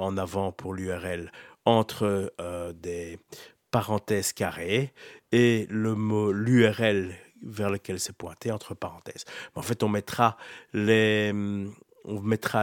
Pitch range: 105-135 Hz